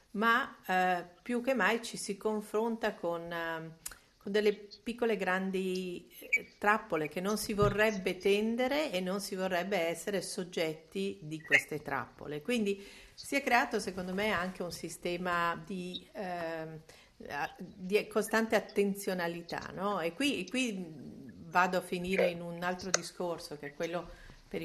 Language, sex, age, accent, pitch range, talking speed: Italian, female, 50-69, native, 165-205 Hz, 140 wpm